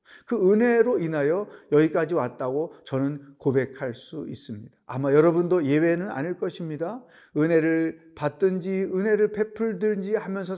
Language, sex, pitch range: Korean, male, 140-195 Hz